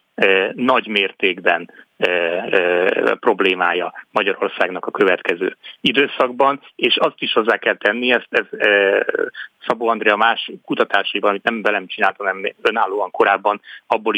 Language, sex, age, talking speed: Hungarian, male, 30-49, 125 wpm